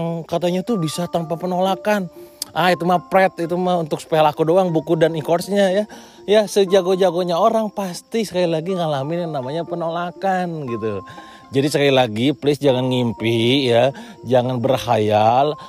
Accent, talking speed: native, 145 wpm